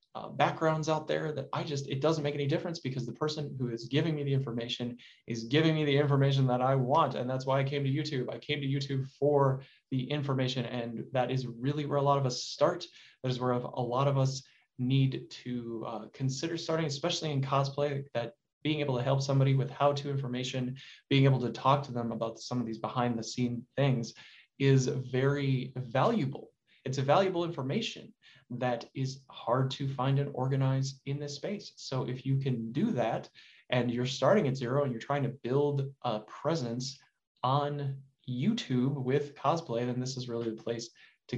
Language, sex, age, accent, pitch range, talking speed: English, male, 20-39, American, 125-145 Hz, 200 wpm